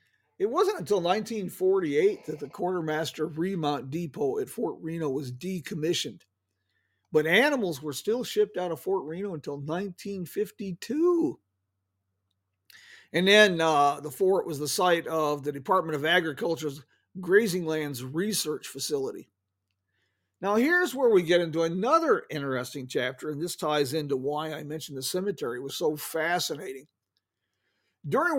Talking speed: 135 wpm